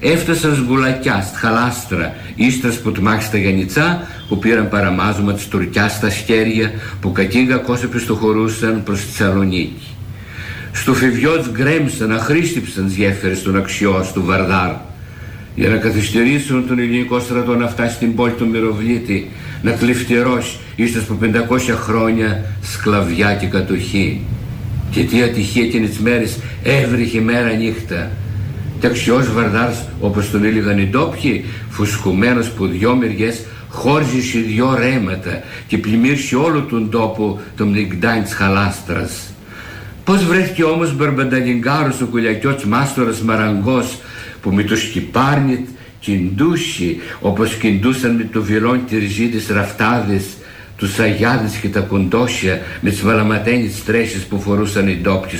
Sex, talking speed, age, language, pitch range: male, 140 wpm, 50-69, Greek, 100-120 Hz